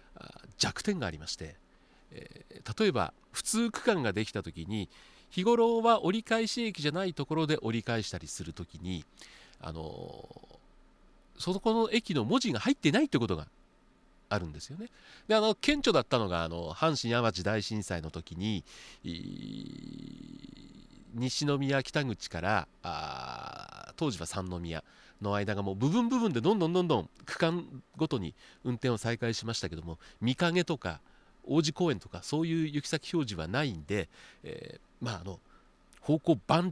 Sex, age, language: male, 40-59, Japanese